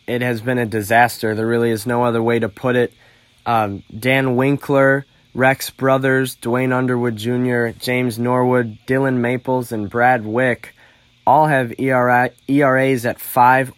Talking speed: 150 wpm